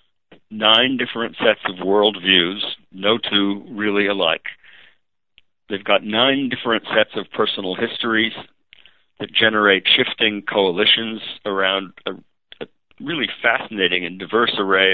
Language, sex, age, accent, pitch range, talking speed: English, male, 50-69, American, 95-110 Hz, 115 wpm